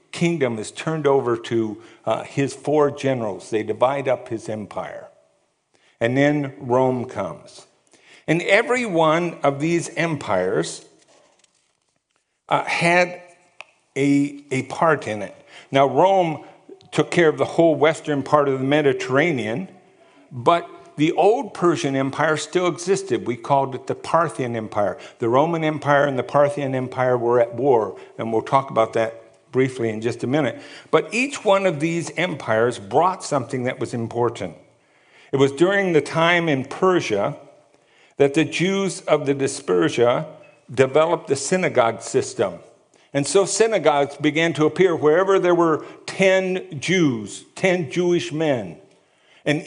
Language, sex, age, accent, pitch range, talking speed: English, male, 50-69, American, 135-175 Hz, 145 wpm